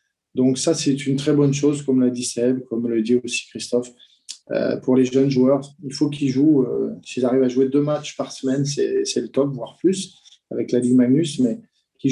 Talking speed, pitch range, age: 230 wpm, 125-150 Hz, 20-39